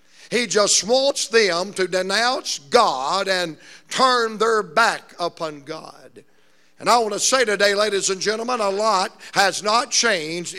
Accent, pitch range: American, 190-245 Hz